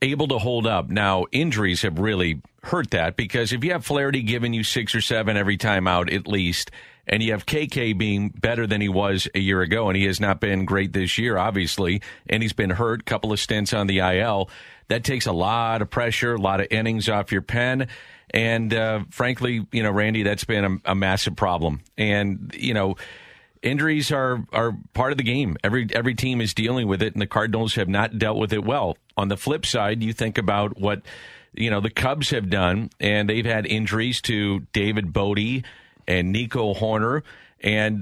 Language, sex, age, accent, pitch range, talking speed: English, male, 40-59, American, 100-125 Hz, 210 wpm